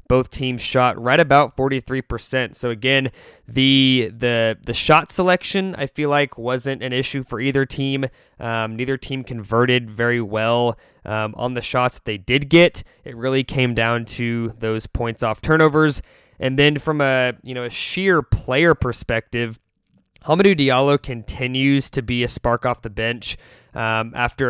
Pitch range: 115-135 Hz